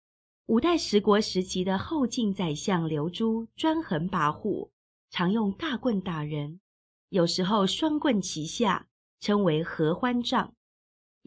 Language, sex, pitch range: Chinese, female, 170-240 Hz